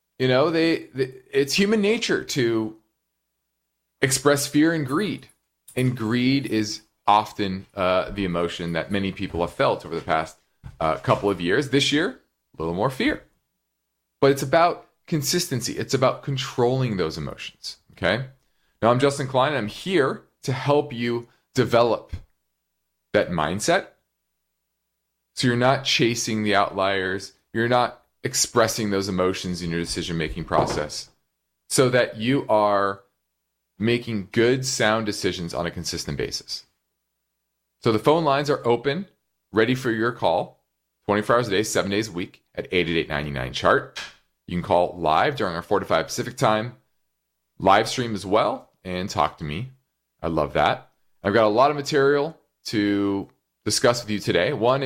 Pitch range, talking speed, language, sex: 85-130 Hz, 155 wpm, English, male